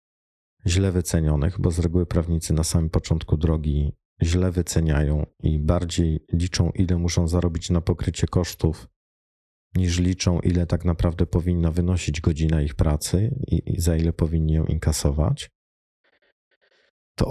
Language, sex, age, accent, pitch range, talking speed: Polish, male, 40-59, native, 80-95 Hz, 130 wpm